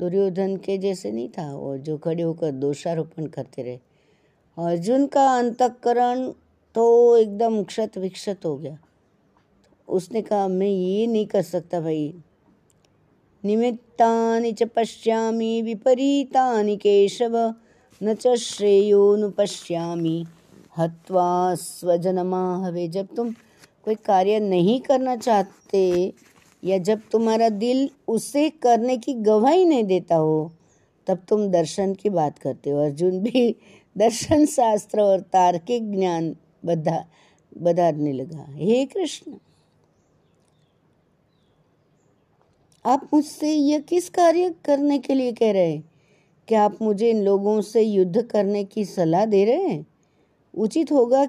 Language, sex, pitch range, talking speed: Hindi, female, 180-235 Hz, 125 wpm